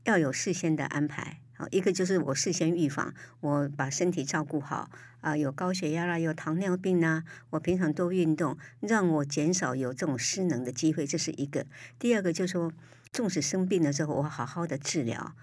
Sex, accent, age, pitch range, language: male, American, 60-79, 140-175 Hz, Chinese